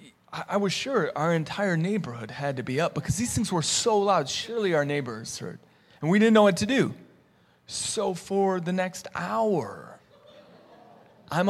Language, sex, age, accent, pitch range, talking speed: English, male, 30-49, American, 130-185 Hz, 170 wpm